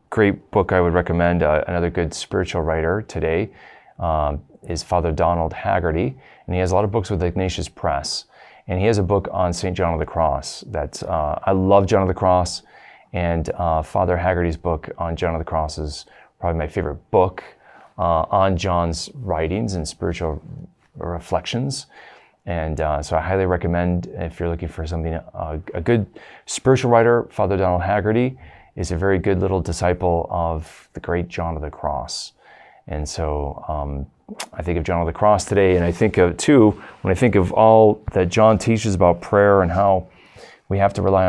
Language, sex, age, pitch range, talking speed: English, male, 30-49, 80-100 Hz, 190 wpm